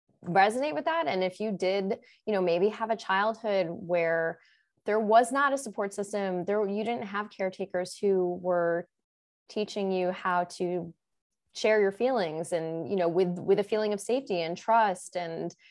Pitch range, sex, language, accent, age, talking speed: 180-230 Hz, female, English, American, 20-39, 175 wpm